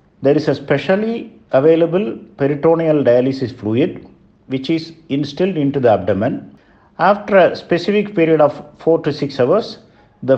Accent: Indian